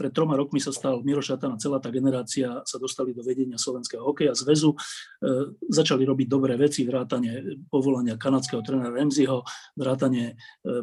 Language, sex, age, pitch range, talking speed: Slovak, male, 40-59, 125-145 Hz, 160 wpm